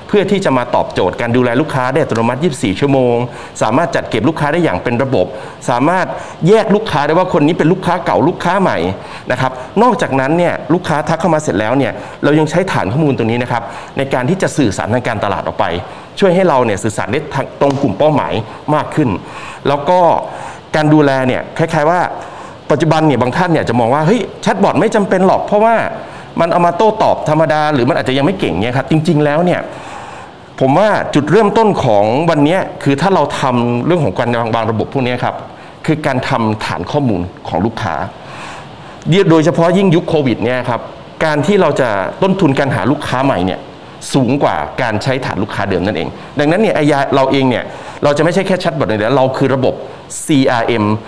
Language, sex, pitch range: Thai, male, 125-175 Hz